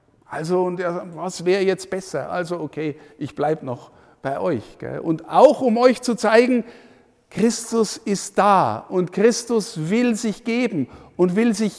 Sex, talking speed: male, 160 wpm